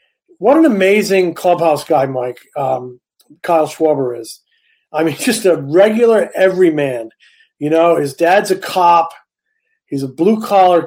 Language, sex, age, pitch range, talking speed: English, male, 40-59, 160-215 Hz, 140 wpm